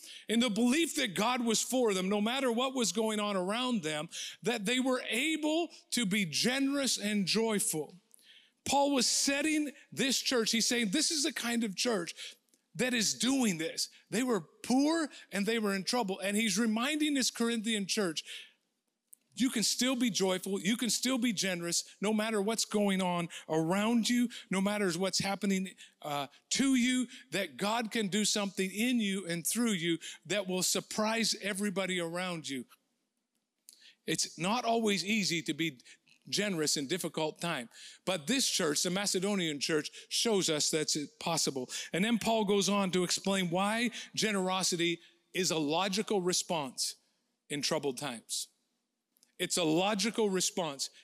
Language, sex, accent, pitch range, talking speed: English, male, American, 170-235 Hz, 160 wpm